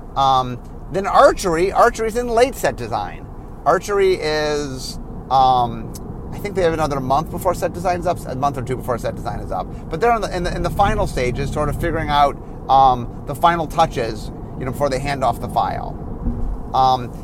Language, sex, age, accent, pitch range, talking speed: English, male, 30-49, American, 125-170 Hz, 200 wpm